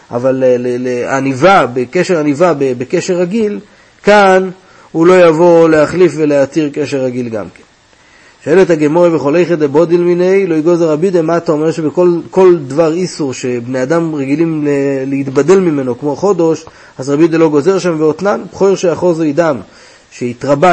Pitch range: 150-185 Hz